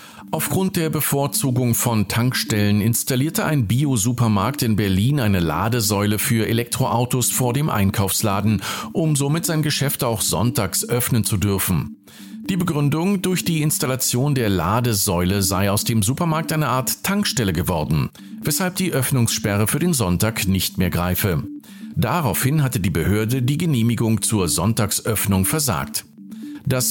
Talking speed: 135 wpm